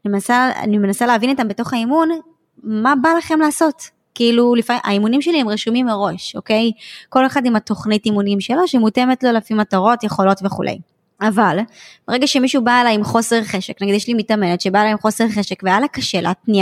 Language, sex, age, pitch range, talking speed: Hebrew, male, 20-39, 200-255 Hz, 190 wpm